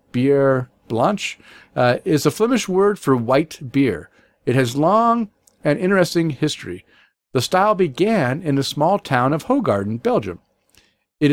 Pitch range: 125-185 Hz